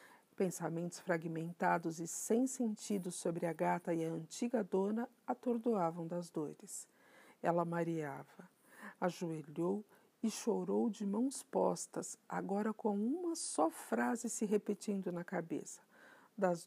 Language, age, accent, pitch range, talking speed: Portuguese, 50-69, Brazilian, 170-220 Hz, 120 wpm